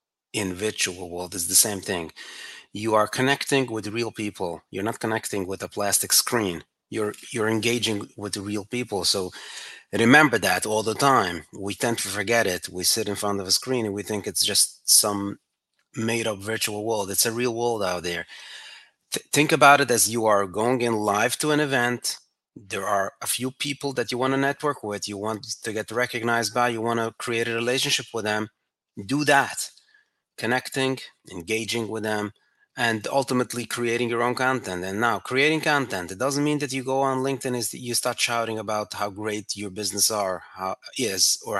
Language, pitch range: English, 105-135 Hz